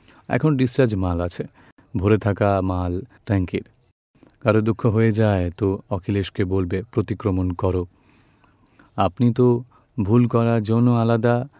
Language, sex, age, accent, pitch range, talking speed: Gujarati, male, 30-49, native, 100-115 Hz, 70 wpm